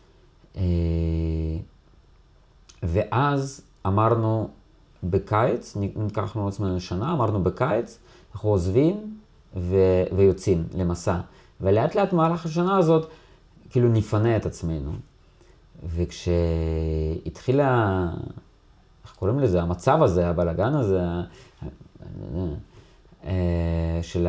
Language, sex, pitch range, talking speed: Hebrew, male, 85-110 Hz, 70 wpm